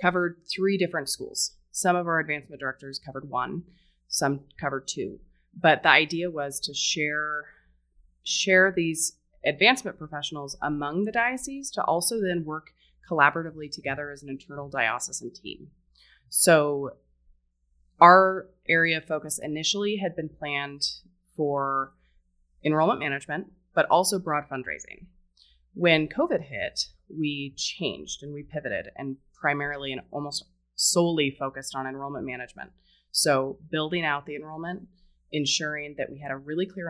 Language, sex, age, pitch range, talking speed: English, female, 20-39, 135-165 Hz, 135 wpm